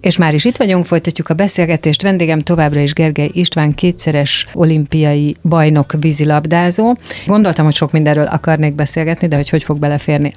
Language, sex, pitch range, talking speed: Hungarian, female, 155-175 Hz, 160 wpm